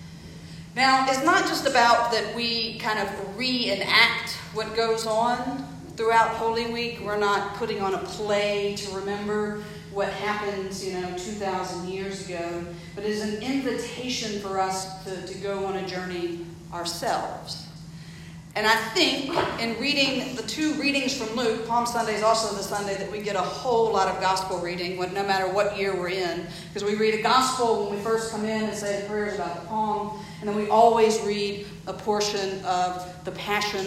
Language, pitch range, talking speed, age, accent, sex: English, 185-225 Hz, 180 wpm, 40-59, American, female